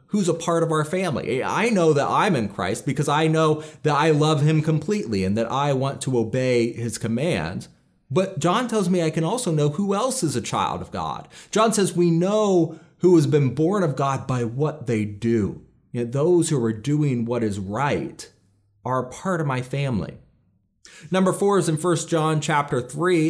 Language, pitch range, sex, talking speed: English, 125-165 Hz, male, 200 wpm